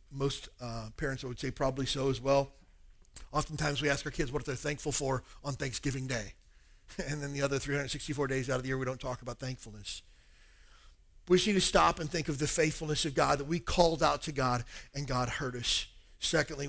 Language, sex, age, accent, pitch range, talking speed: English, male, 40-59, American, 125-155 Hz, 210 wpm